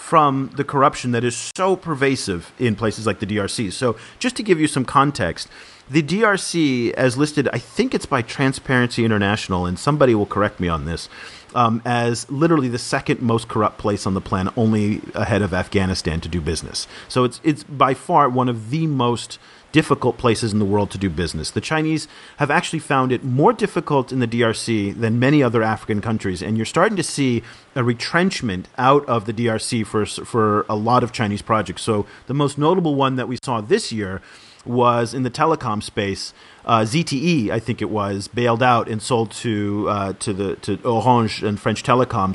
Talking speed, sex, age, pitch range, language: 195 wpm, male, 40-59, 105-135 Hz, English